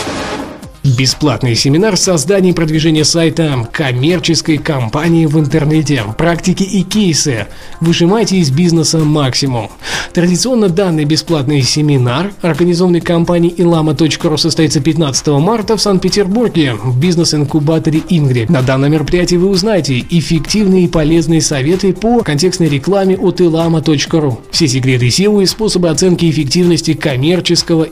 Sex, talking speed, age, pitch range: male, 115 wpm, 20-39, 150-180 Hz